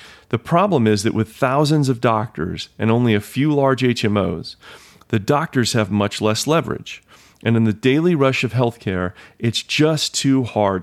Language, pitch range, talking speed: English, 100-135 Hz, 170 wpm